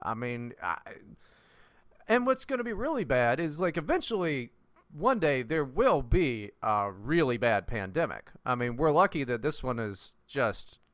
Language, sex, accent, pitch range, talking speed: English, male, American, 120-195 Hz, 170 wpm